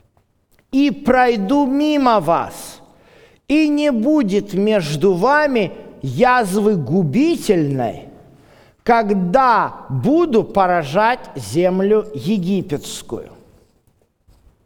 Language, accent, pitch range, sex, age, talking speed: Russian, native, 205-280 Hz, male, 50-69, 65 wpm